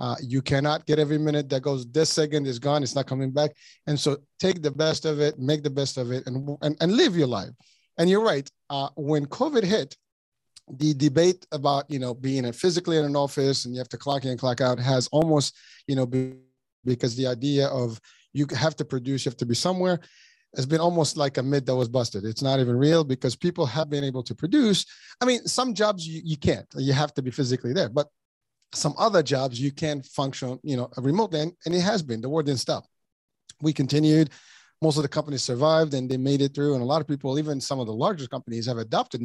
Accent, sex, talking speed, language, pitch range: American, male, 235 wpm, English, 130-155 Hz